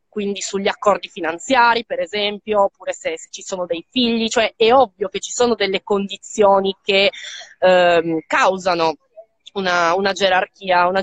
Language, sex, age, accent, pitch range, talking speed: Italian, female, 20-39, native, 185-230 Hz, 145 wpm